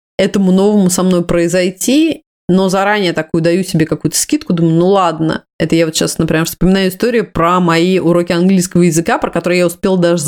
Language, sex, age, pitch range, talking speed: Russian, female, 20-39, 170-205 Hz, 185 wpm